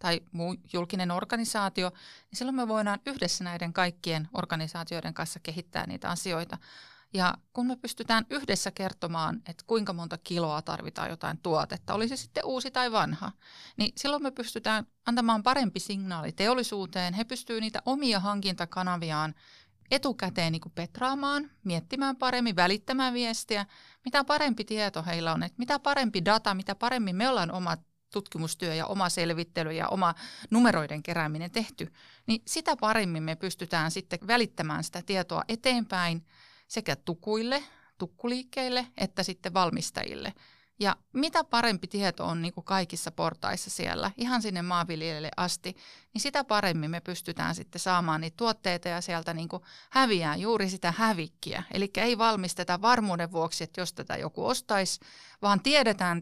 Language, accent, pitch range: Finnish, native, 170-230 Hz